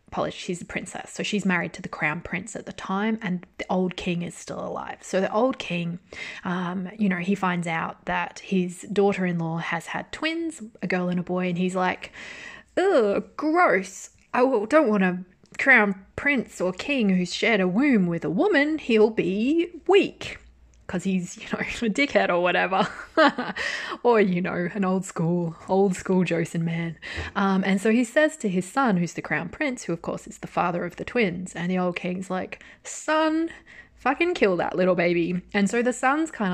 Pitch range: 180-250 Hz